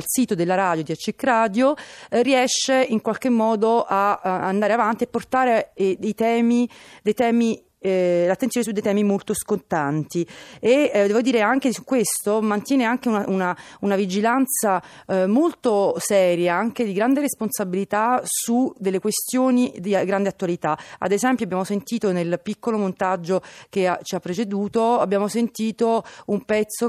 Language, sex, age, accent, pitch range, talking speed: Italian, female, 30-49, native, 185-235 Hz, 160 wpm